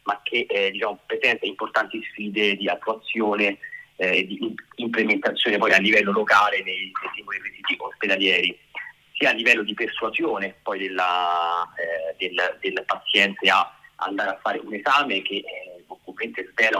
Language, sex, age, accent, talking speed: Italian, male, 30-49, native, 145 wpm